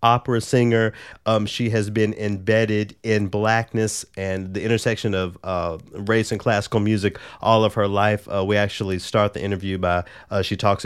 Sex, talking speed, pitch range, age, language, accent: male, 175 wpm, 95-110 Hz, 30-49, English, American